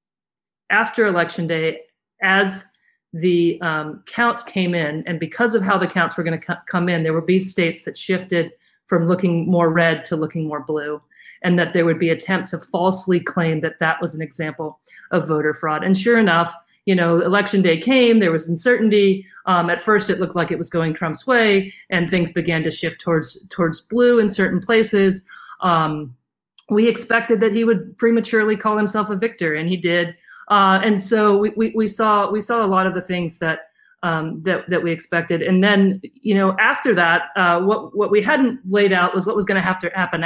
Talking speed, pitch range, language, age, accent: 210 wpm, 170-210 Hz, English, 40-59, American